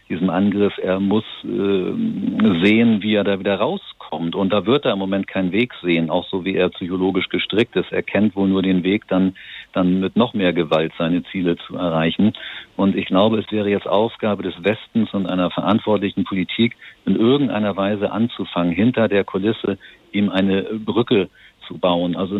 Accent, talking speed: German, 180 wpm